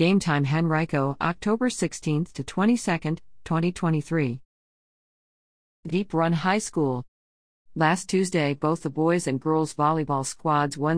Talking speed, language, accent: 110 wpm, English, American